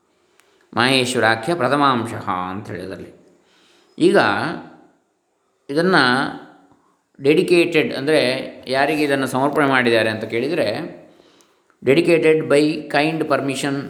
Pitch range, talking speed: 115-145 Hz, 80 wpm